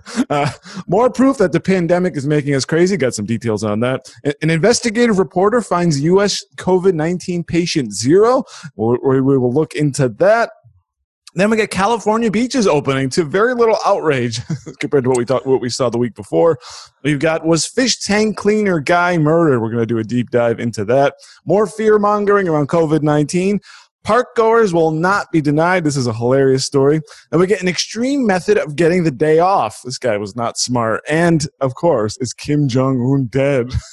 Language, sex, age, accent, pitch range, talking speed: English, male, 30-49, American, 130-185 Hz, 185 wpm